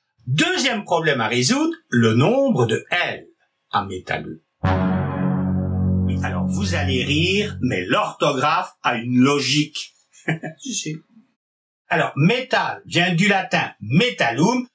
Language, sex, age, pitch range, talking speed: French, male, 60-79, 145-240 Hz, 110 wpm